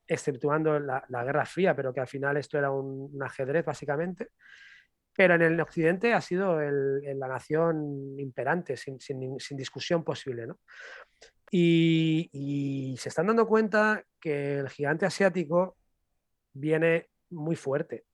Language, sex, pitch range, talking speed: Spanish, male, 150-195 Hz, 135 wpm